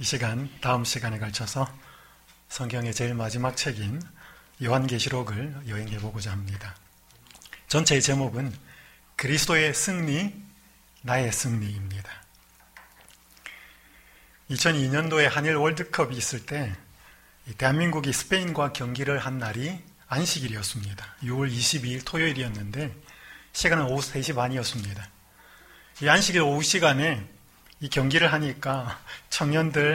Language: Korean